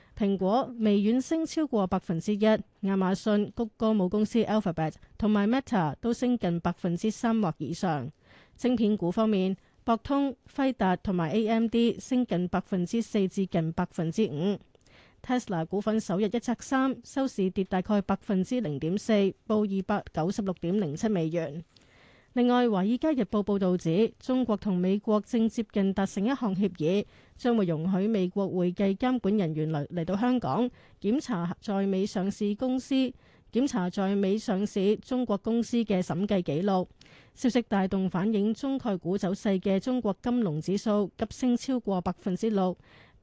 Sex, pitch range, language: female, 185-230 Hz, Chinese